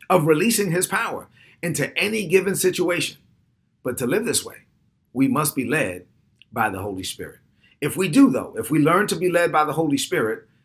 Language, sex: English, male